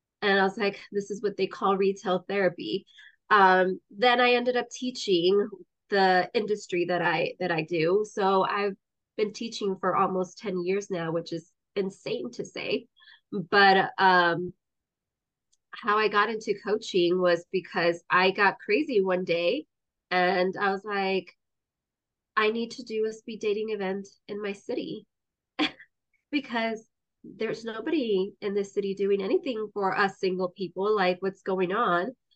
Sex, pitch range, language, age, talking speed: female, 185-230 Hz, English, 20-39, 155 wpm